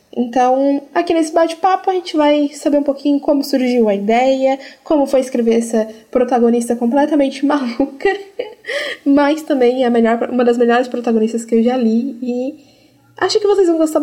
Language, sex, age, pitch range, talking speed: Portuguese, female, 10-29, 230-280 Hz, 165 wpm